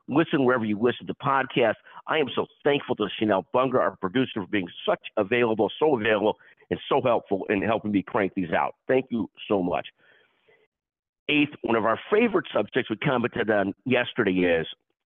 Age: 50-69